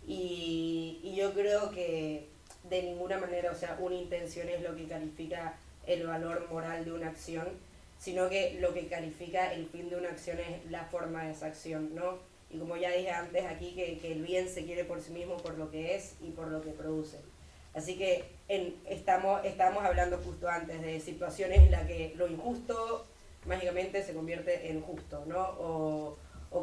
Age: 20-39